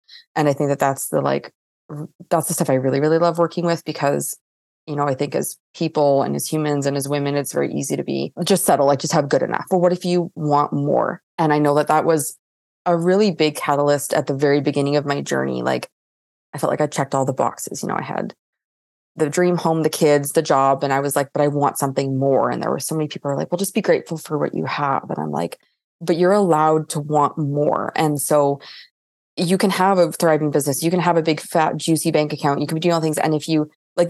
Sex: female